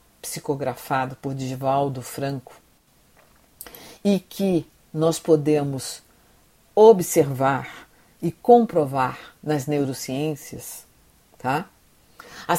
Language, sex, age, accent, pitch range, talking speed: Portuguese, female, 50-69, Brazilian, 155-205 Hz, 65 wpm